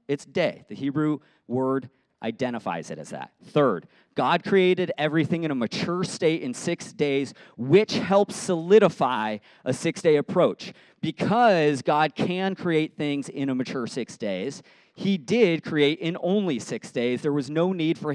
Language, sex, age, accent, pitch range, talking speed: English, male, 40-59, American, 125-175 Hz, 160 wpm